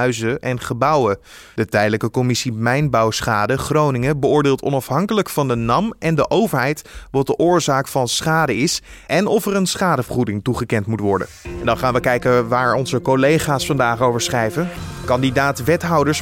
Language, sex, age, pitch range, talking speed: Dutch, male, 20-39, 120-155 Hz, 150 wpm